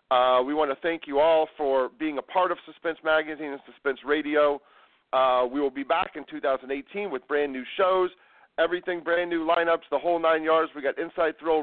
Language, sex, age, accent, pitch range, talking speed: English, male, 40-59, American, 150-190 Hz, 200 wpm